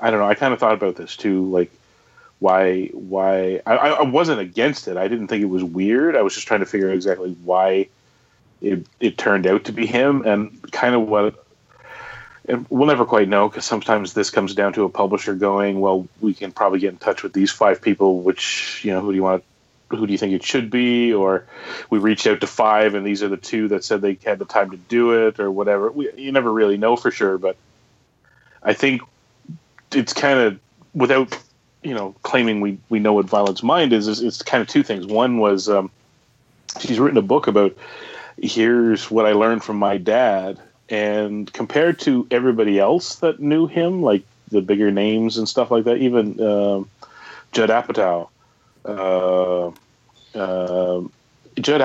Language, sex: English, male